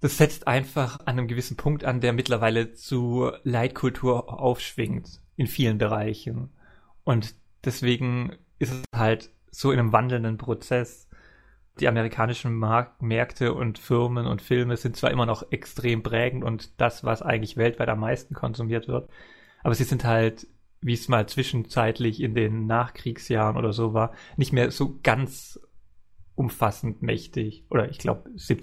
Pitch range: 110-125 Hz